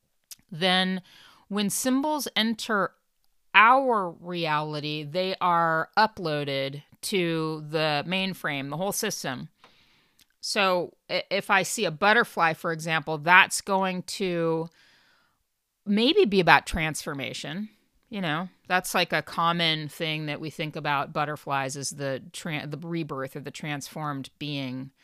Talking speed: 120 wpm